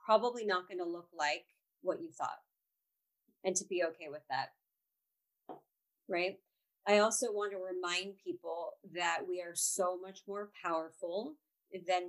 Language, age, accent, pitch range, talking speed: English, 40-59, American, 180-215 Hz, 150 wpm